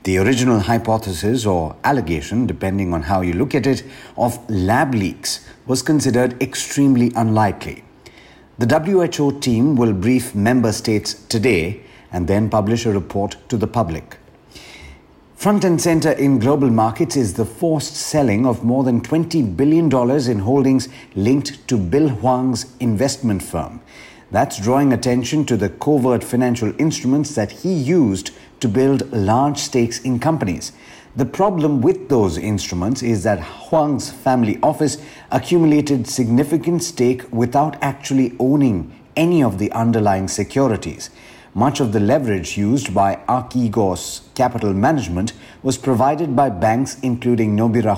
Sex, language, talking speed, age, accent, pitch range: male, English, 140 wpm, 50-69, Indian, 105-140 Hz